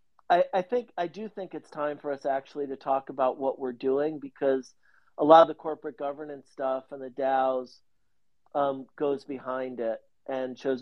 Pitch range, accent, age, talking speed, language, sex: 130-165 Hz, American, 40-59, 185 wpm, English, male